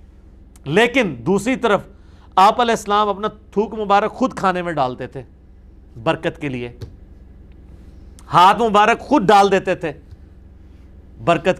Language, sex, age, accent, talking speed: English, male, 50-69, Indian, 125 wpm